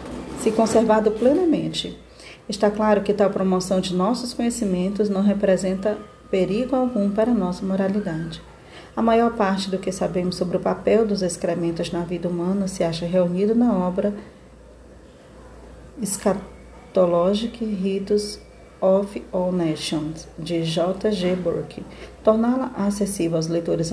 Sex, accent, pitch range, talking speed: female, Brazilian, 180-215 Hz, 130 wpm